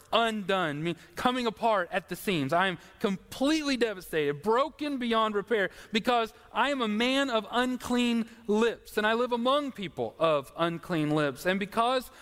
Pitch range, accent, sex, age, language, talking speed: 185-250 Hz, American, male, 40-59, English, 150 wpm